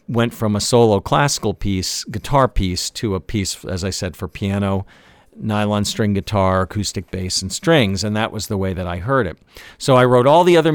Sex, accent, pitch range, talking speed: male, American, 100-135 Hz, 210 wpm